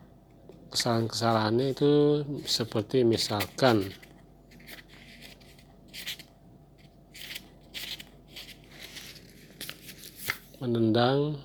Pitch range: 105-120 Hz